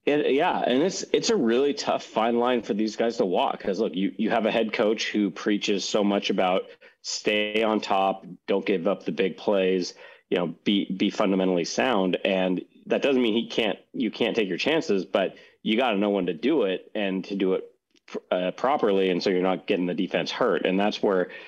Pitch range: 95-105 Hz